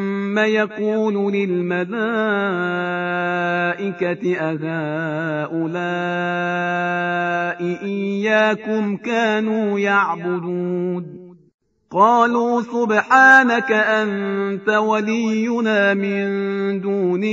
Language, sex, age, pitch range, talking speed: Persian, male, 40-59, 180-215 Hz, 40 wpm